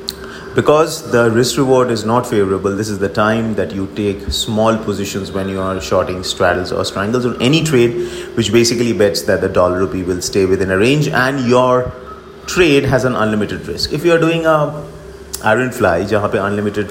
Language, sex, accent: English, male, Indian